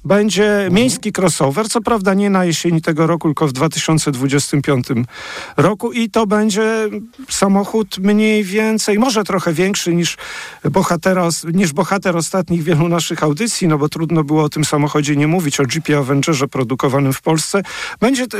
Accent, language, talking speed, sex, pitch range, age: native, Polish, 155 wpm, male, 150-195 Hz, 40-59